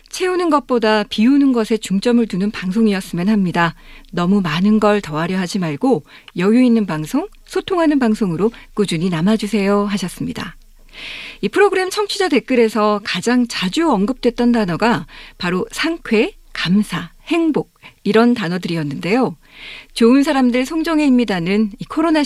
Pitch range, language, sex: 200-275 Hz, Korean, female